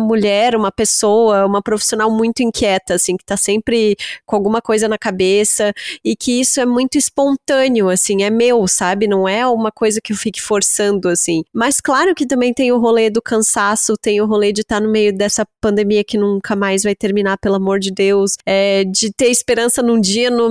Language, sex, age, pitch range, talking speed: Portuguese, female, 20-39, 205-240 Hz, 205 wpm